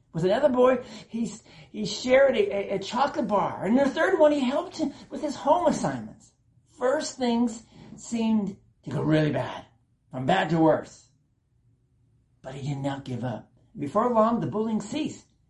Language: English